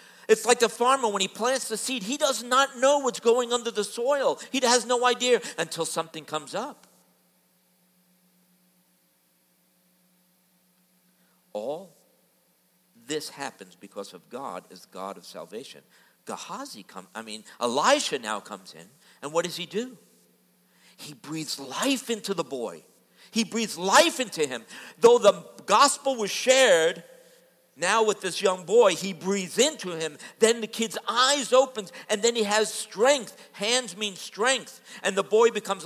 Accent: American